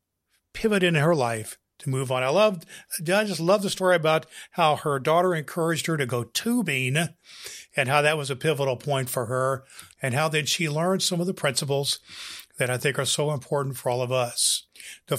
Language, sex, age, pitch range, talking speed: English, male, 50-69, 130-170 Hz, 205 wpm